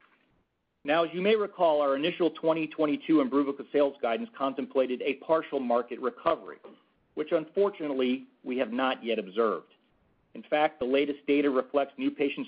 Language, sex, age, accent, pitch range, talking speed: English, male, 40-59, American, 125-155 Hz, 150 wpm